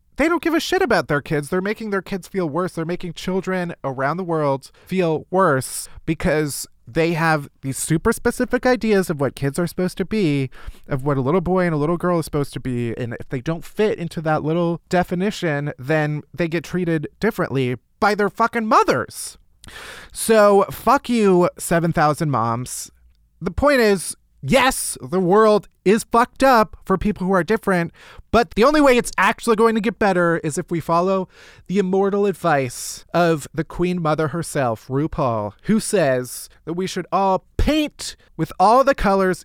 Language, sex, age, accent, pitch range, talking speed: English, male, 20-39, American, 145-200 Hz, 185 wpm